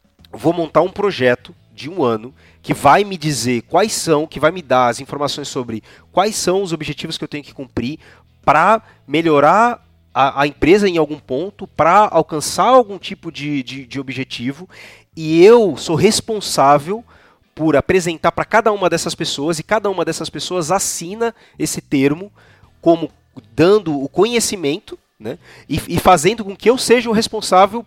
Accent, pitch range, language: Brazilian, 130-180 Hz, Portuguese